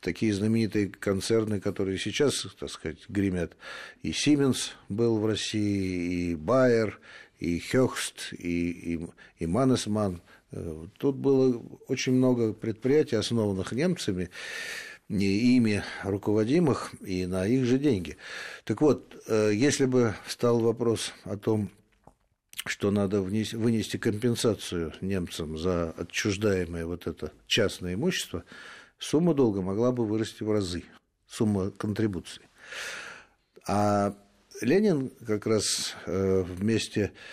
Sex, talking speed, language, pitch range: male, 115 wpm, Russian, 95-115 Hz